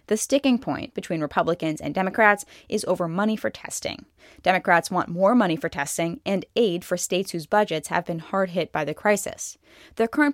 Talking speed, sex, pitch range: 185 wpm, female, 165-205 Hz